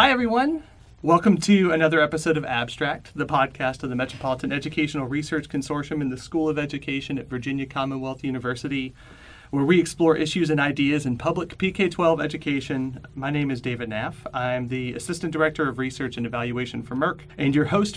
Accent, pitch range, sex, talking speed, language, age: American, 125-155 Hz, male, 175 wpm, English, 30-49